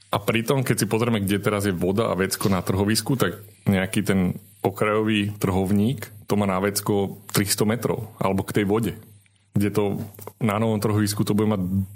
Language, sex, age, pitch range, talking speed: Slovak, male, 30-49, 100-115 Hz, 180 wpm